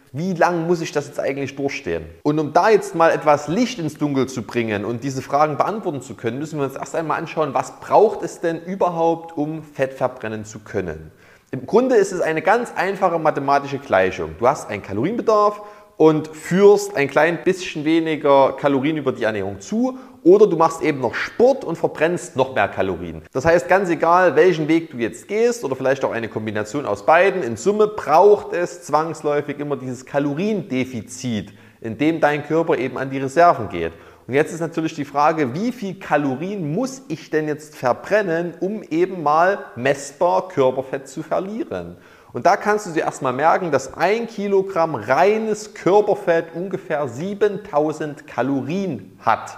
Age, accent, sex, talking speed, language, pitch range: 30-49, German, male, 175 wpm, German, 130-180 Hz